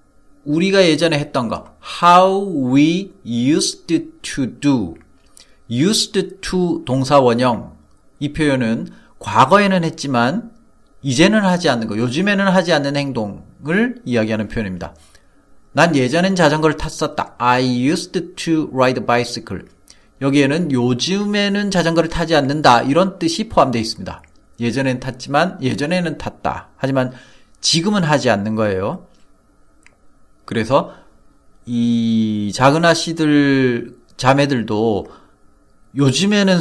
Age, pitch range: 40-59, 125-175 Hz